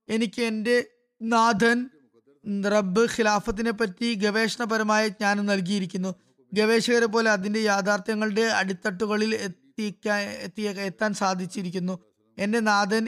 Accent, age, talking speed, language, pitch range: native, 20-39, 90 wpm, Malayalam, 190-220 Hz